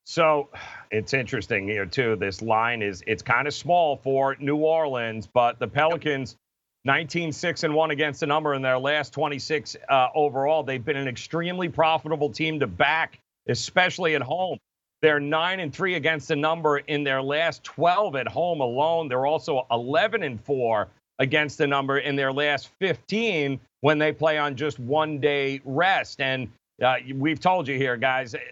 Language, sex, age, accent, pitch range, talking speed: English, male, 40-59, American, 140-175 Hz, 175 wpm